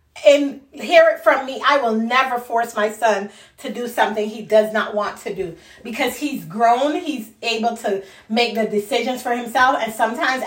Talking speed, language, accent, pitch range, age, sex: 190 wpm, English, American, 215-265 Hz, 30-49, female